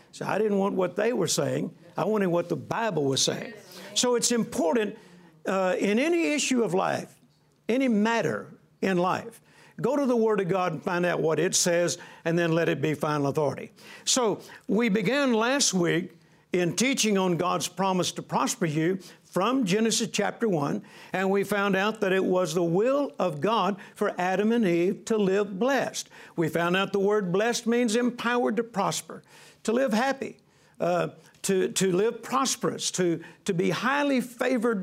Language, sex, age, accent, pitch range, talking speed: English, male, 60-79, American, 180-230 Hz, 180 wpm